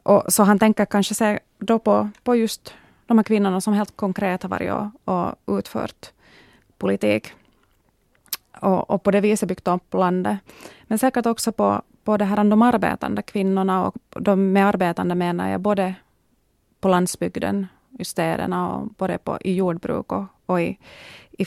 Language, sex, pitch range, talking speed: Swedish, female, 170-205 Hz, 165 wpm